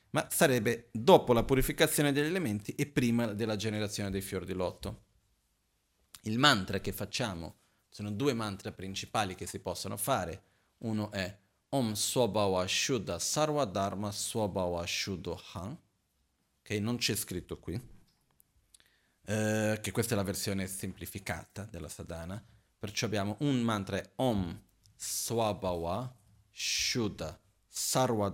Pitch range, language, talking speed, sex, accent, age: 95-120 Hz, Italian, 120 wpm, male, native, 40-59